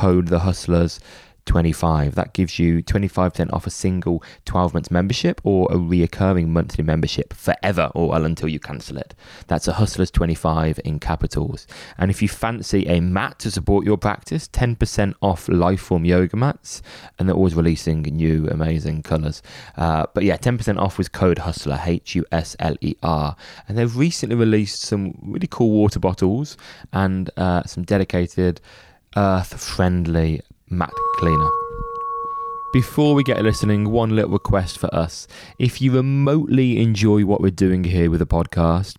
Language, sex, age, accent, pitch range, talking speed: English, male, 20-39, British, 85-105 Hz, 150 wpm